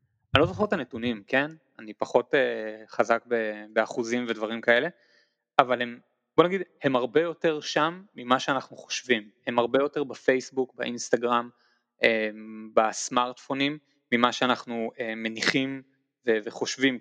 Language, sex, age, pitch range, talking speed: Hebrew, male, 20-39, 120-160 Hz, 135 wpm